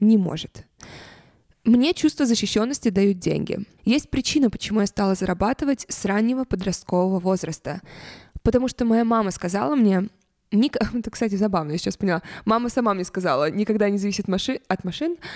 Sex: female